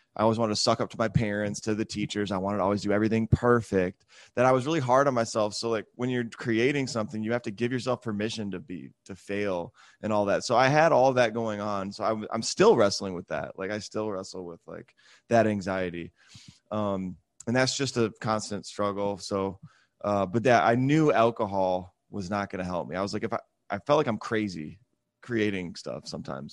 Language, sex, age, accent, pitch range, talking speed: English, male, 20-39, American, 95-120 Hz, 230 wpm